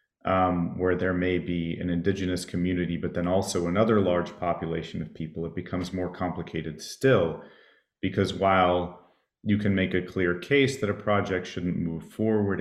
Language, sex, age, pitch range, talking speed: English, male, 30-49, 85-105 Hz, 165 wpm